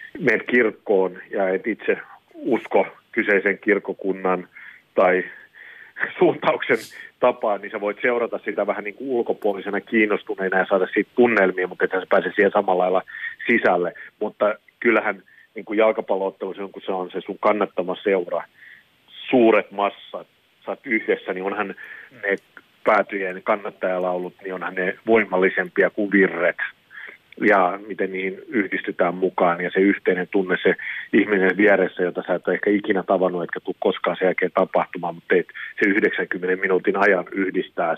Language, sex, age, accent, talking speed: Finnish, male, 40-59, native, 145 wpm